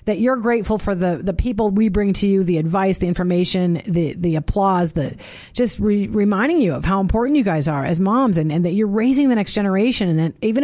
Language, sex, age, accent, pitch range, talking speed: English, female, 40-59, American, 165-225 Hz, 235 wpm